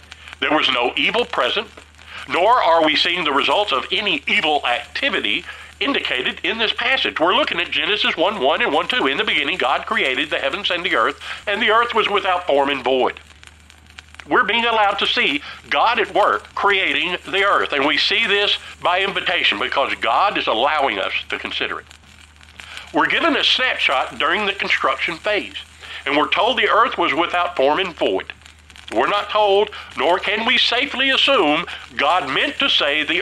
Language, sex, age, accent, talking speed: English, male, 50-69, American, 185 wpm